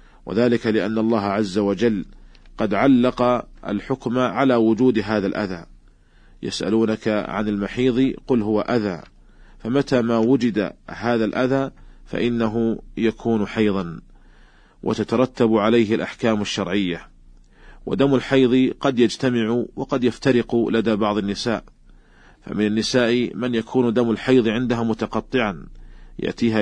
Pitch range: 105-120 Hz